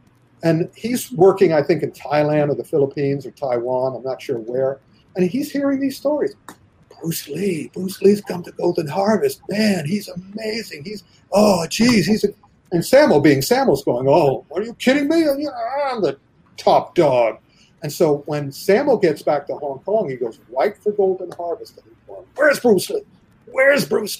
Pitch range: 150-220 Hz